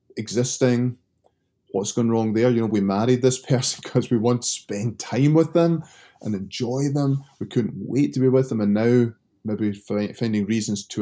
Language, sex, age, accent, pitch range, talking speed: English, male, 20-39, British, 100-125 Hz, 190 wpm